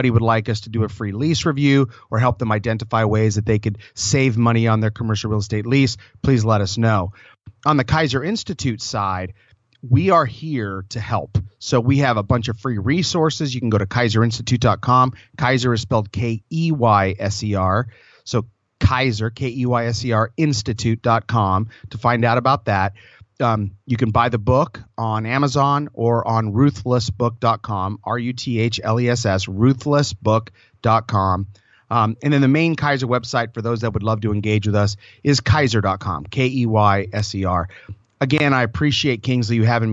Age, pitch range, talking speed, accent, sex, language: 30-49, 110-130 Hz, 155 wpm, American, male, English